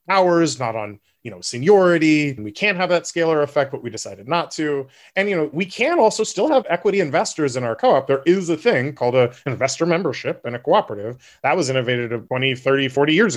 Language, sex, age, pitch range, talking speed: English, male, 30-49, 125-170 Hz, 215 wpm